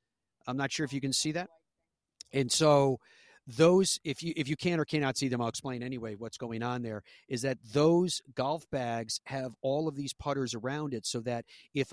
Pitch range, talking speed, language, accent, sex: 115-140 Hz, 210 wpm, English, American, male